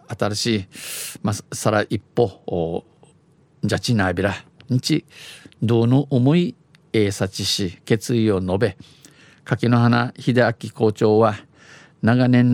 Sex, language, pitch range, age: male, Japanese, 105-130 Hz, 50-69